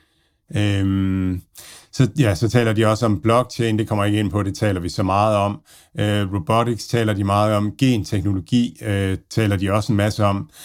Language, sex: Danish, male